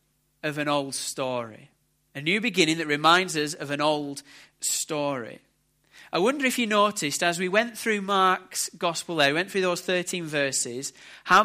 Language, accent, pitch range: English, British, 155-200 Hz